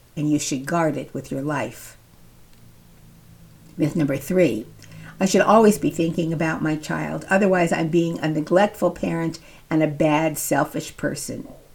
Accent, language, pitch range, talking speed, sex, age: American, English, 155-190 Hz, 150 wpm, female, 50-69